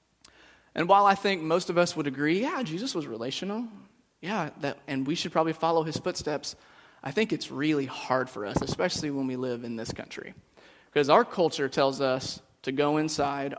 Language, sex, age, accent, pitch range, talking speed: English, male, 30-49, American, 140-165 Hz, 190 wpm